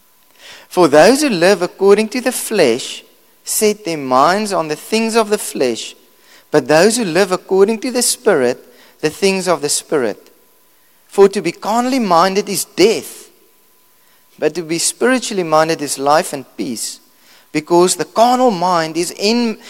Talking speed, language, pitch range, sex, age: 160 wpm, English, 135-205 Hz, male, 30-49